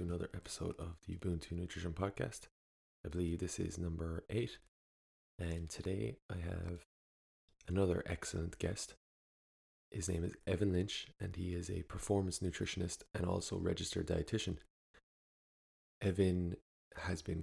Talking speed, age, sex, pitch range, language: 130 wpm, 20-39, male, 80-90 Hz, English